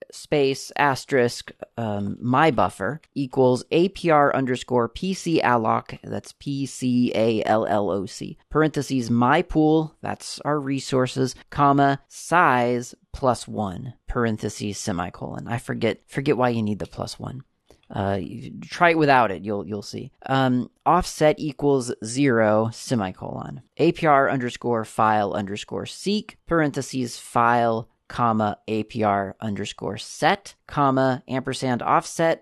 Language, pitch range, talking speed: English, 110-140 Hz, 120 wpm